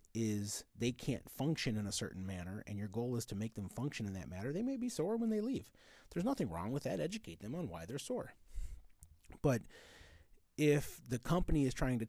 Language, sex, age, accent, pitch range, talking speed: English, male, 30-49, American, 90-120 Hz, 220 wpm